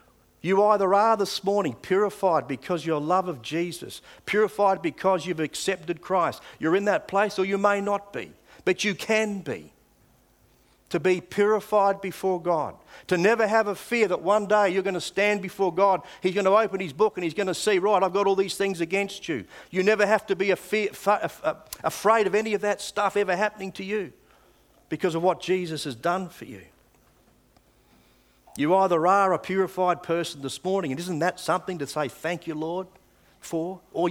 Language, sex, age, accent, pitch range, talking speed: English, male, 50-69, Australian, 170-200 Hz, 190 wpm